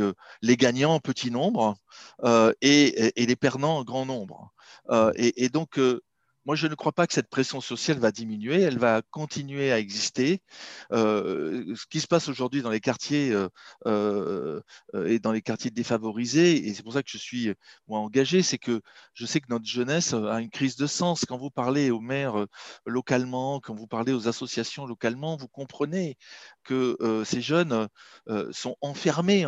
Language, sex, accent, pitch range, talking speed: French, male, French, 120-155 Hz, 185 wpm